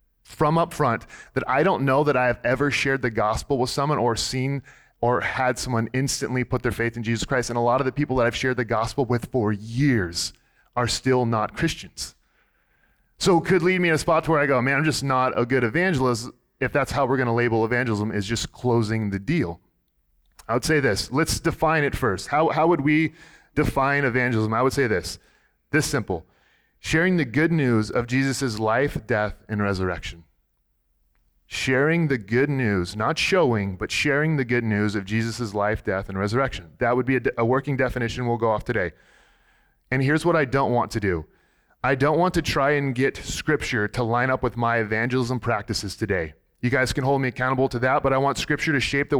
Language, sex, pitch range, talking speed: English, male, 110-140 Hz, 215 wpm